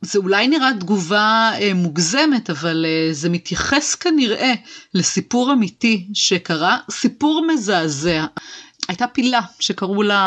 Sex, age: female, 30-49